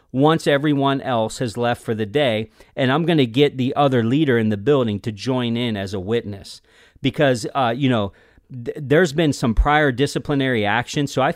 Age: 40-59